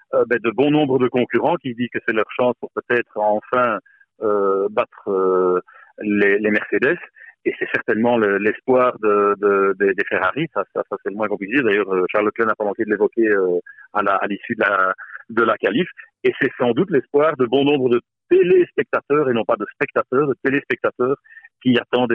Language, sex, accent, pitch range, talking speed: French, male, French, 110-155 Hz, 205 wpm